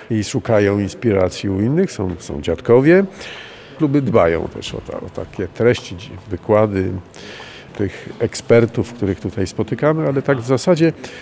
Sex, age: male, 50-69